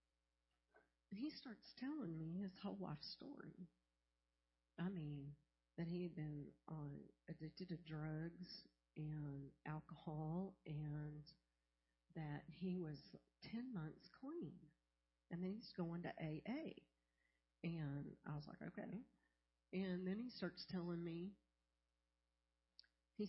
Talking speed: 115 wpm